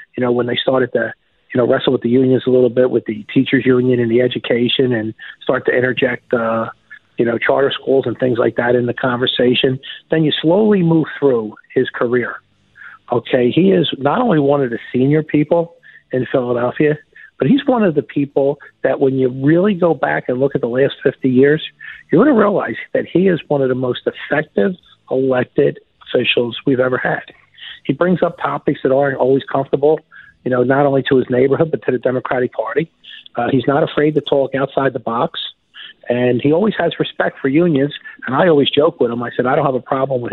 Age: 50-69